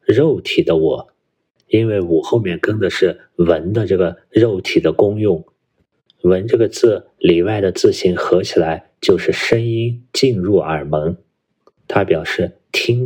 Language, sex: Chinese, male